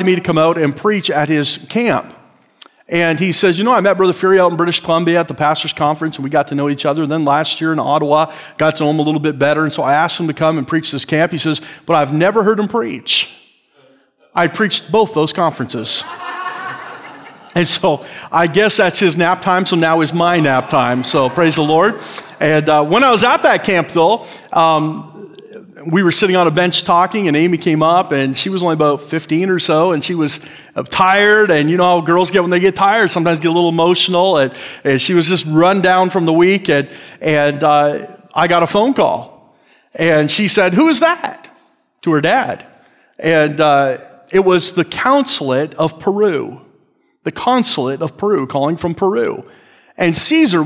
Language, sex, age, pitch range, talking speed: English, male, 40-59, 155-185 Hz, 215 wpm